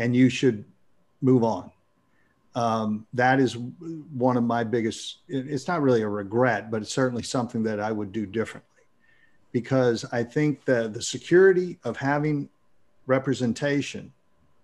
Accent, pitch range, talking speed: American, 115-150 Hz, 145 wpm